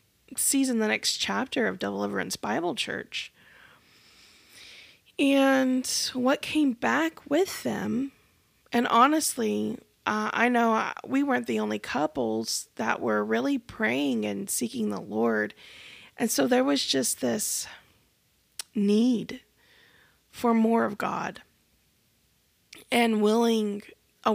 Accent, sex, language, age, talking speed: American, female, English, 20-39, 115 wpm